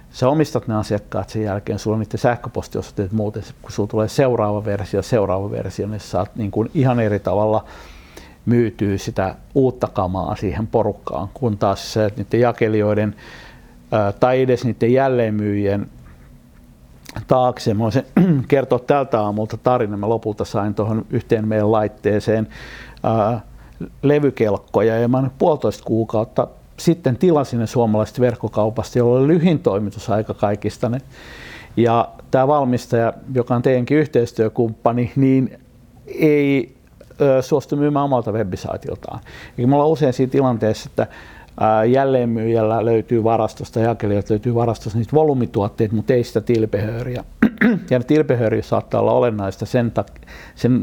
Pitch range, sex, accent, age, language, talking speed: 105-125 Hz, male, native, 60-79, Finnish, 125 wpm